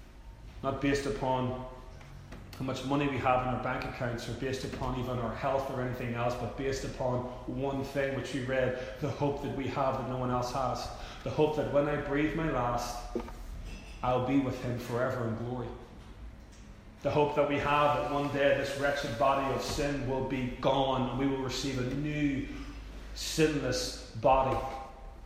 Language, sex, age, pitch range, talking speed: English, male, 30-49, 120-145 Hz, 185 wpm